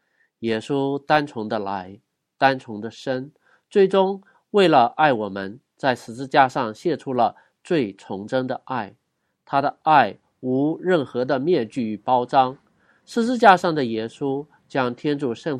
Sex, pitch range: male, 120-155 Hz